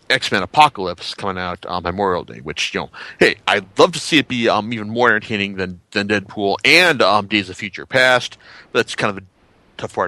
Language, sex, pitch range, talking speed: English, male, 100-165 Hz, 220 wpm